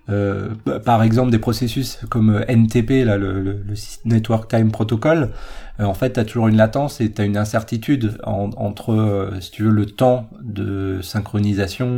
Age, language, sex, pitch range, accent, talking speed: 30-49, French, male, 105-125 Hz, French, 185 wpm